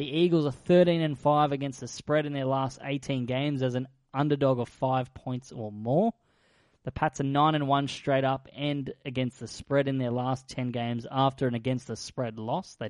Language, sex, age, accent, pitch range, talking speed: English, male, 20-39, Australian, 125-145 Hz, 185 wpm